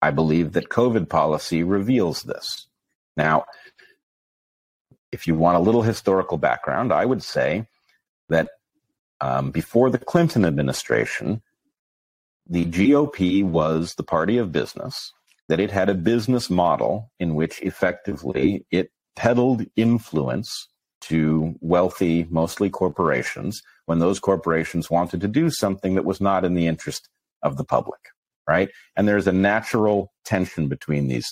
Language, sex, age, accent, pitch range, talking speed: English, male, 40-59, American, 80-105 Hz, 140 wpm